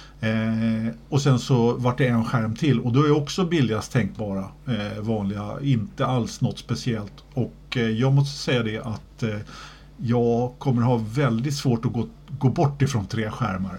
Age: 50-69